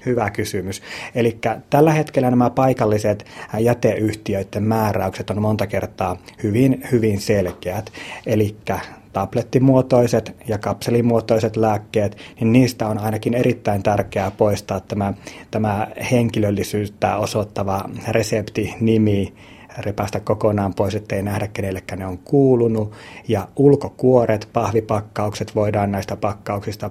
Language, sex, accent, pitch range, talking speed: Finnish, male, native, 100-115 Hz, 105 wpm